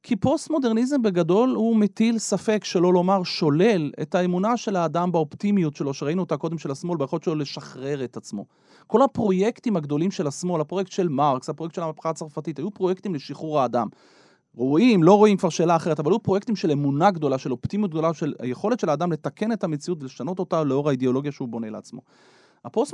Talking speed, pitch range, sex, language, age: 190 wpm, 150-205 Hz, male, Hebrew, 30-49